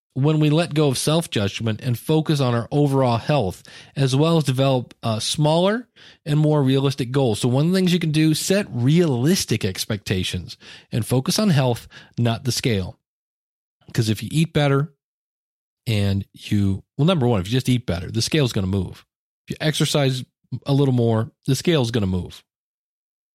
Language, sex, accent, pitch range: English, male, American, 120-160 Hz